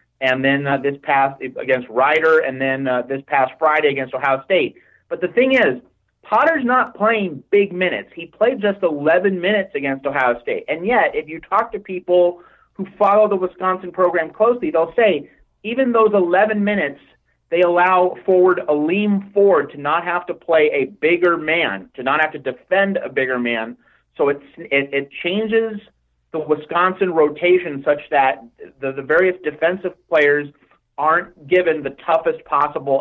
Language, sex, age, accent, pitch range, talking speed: English, male, 40-59, American, 140-190 Hz, 165 wpm